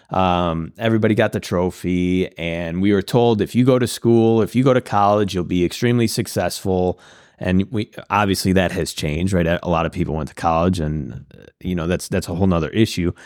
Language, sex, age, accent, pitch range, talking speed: English, male, 30-49, American, 85-115 Hz, 210 wpm